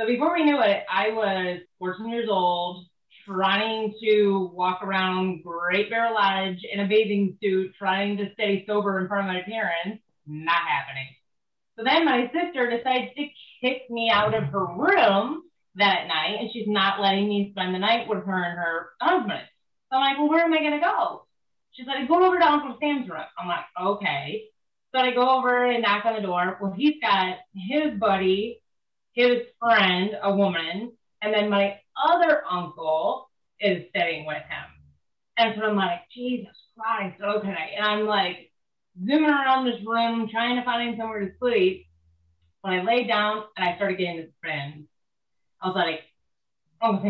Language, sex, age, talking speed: English, female, 30-49, 180 wpm